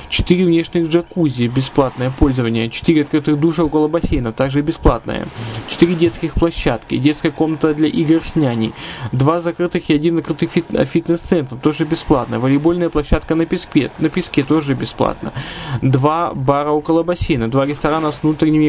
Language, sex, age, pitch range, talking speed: Russian, male, 20-39, 135-160 Hz, 145 wpm